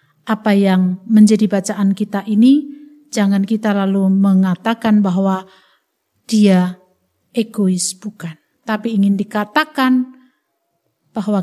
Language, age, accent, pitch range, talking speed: Indonesian, 50-69, native, 210-270 Hz, 95 wpm